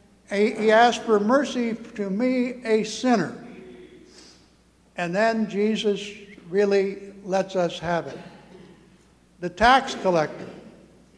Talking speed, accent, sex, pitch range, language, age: 100 wpm, American, male, 175-220 Hz, English, 60-79